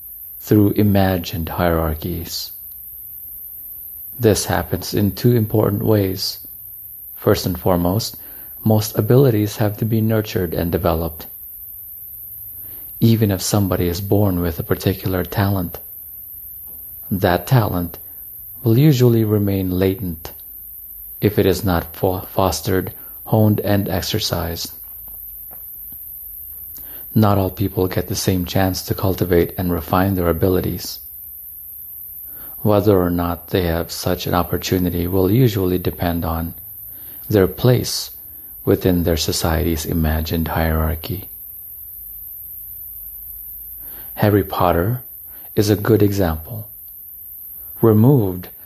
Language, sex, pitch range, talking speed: English, male, 85-105 Hz, 100 wpm